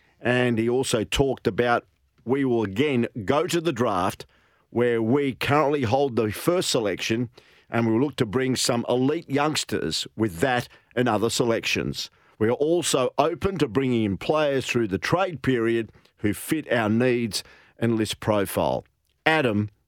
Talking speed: 160 wpm